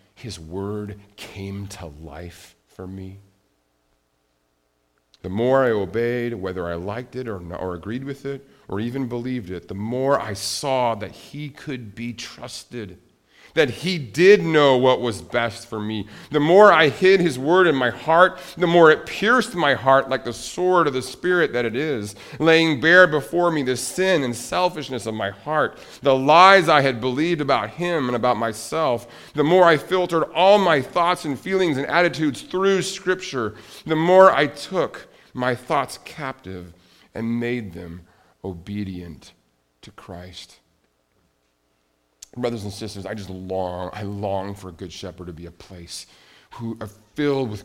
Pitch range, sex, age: 95-135 Hz, male, 40-59